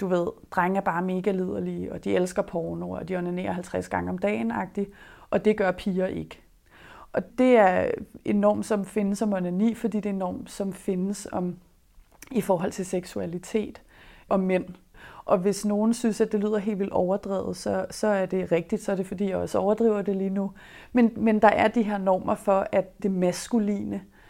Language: Danish